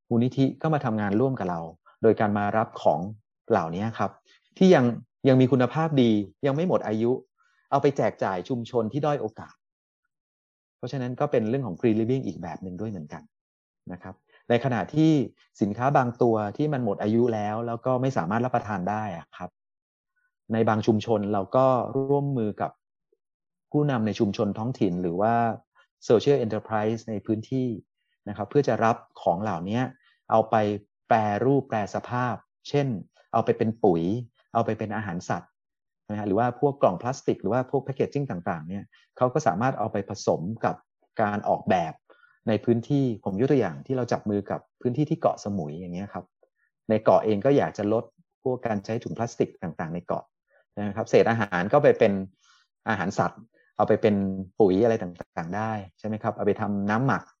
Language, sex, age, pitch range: English, male, 30-49, 105-130 Hz